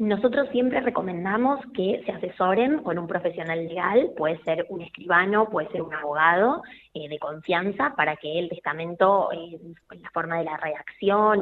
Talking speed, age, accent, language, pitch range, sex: 170 wpm, 20-39, Argentinian, Spanish, 170-235 Hz, female